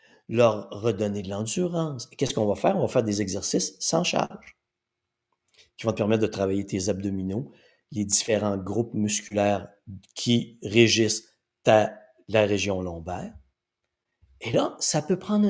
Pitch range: 110-180 Hz